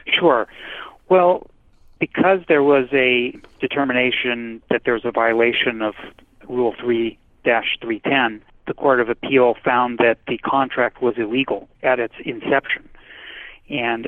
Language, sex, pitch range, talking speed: English, male, 115-130 Hz, 125 wpm